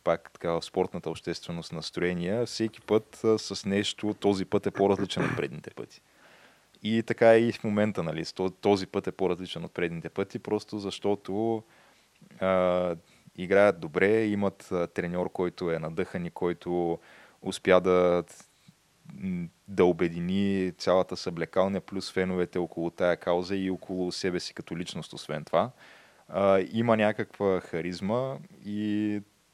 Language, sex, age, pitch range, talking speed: Bulgarian, male, 20-39, 90-105 Hz, 140 wpm